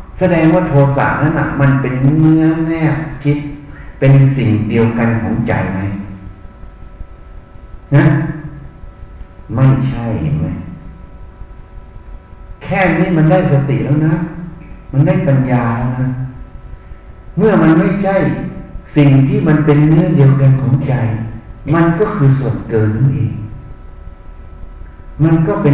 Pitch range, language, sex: 100-150 Hz, Thai, male